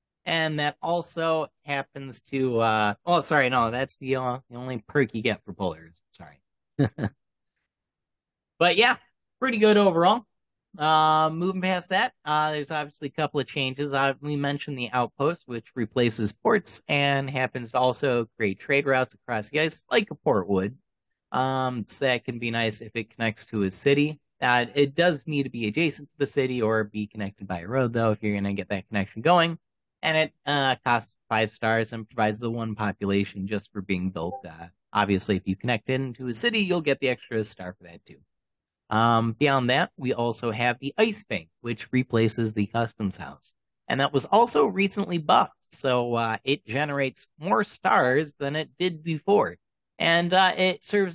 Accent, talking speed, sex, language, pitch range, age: American, 190 wpm, male, English, 110-155 Hz, 30-49